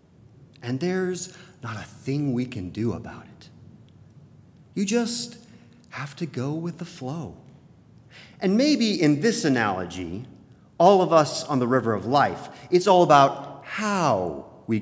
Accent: American